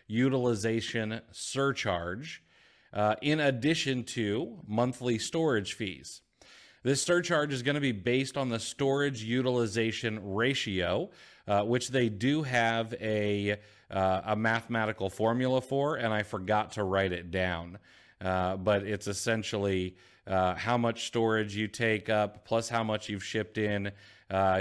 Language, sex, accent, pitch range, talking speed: English, male, American, 100-130 Hz, 140 wpm